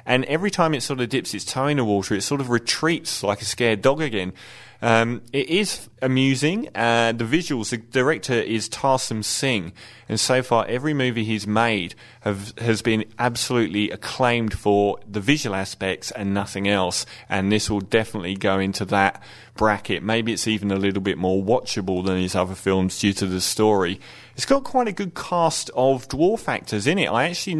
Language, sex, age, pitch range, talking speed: English, male, 30-49, 105-130 Hz, 190 wpm